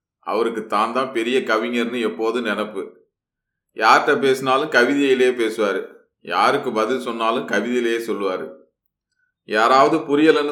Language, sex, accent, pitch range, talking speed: Tamil, male, native, 115-150 Hz, 105 wpm